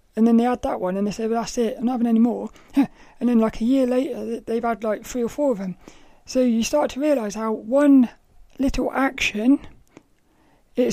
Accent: British